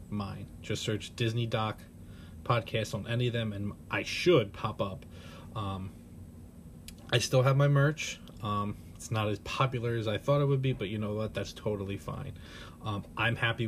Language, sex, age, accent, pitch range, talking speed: English, male, 20-39, American, 95-115 Hz, 185 wpm